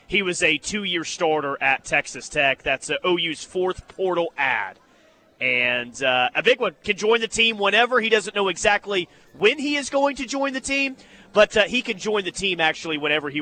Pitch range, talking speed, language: 160-200 Hz, 200 wpm, English